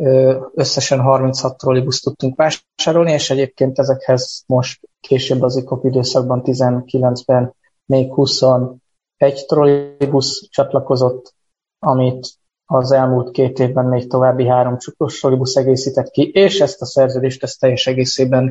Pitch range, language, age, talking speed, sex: 125-140 Hz, Hungarian, 20-39, 120 wpm, male